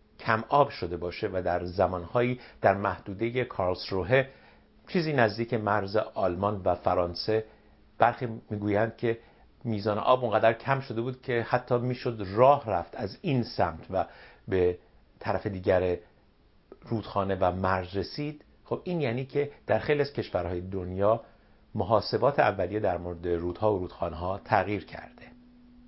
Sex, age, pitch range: male, 60-79, 95-130 Hz